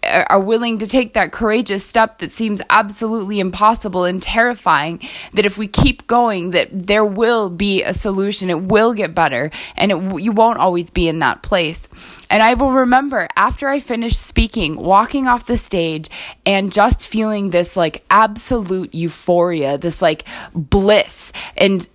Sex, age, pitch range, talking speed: female, 20-39, 180-225 Hz, 160 wpm